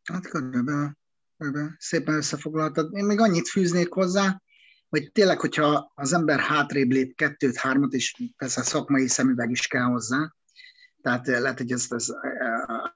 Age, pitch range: 30-49, 130-165 Hz